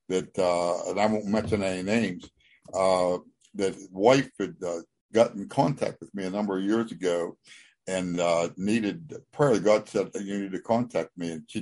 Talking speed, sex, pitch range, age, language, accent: 185 wpm, male, 100-125 Hz, 60-79, English, American